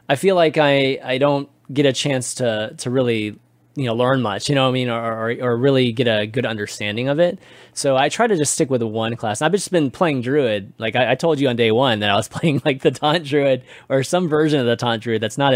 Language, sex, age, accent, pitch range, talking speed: English, male, 20-39, American, 115-165 Hz, 275 wpm